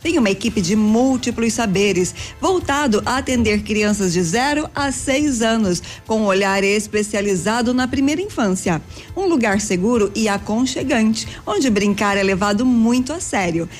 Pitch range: 210-270 Hz